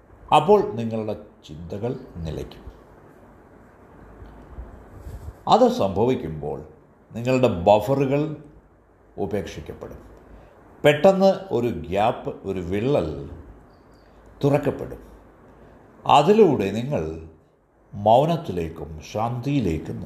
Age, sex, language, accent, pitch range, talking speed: 60-79, male, Malayalam, native, 90-150 Hz, 55 wpm